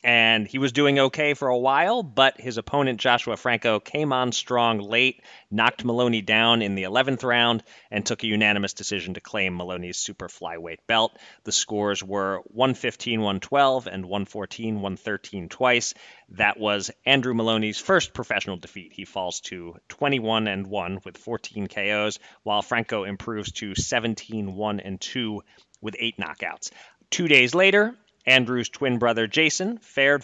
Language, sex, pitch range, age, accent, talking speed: English, male, 100-125 Hz, 30-49, American, 155 wpm